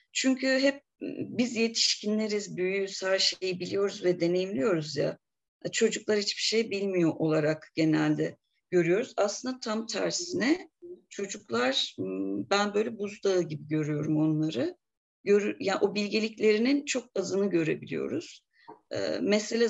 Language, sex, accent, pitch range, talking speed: Turkish, female, native, 180-240 Hz, 110 wpm